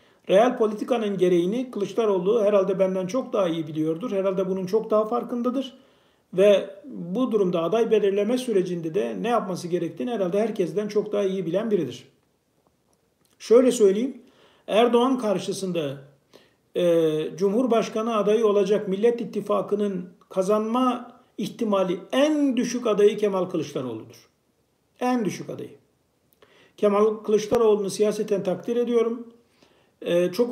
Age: 50-69